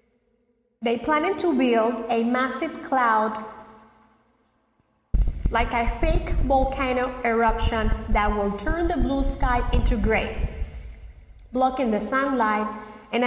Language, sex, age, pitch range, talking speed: English, female, 30-49, 230-315 Hz, 110 wpm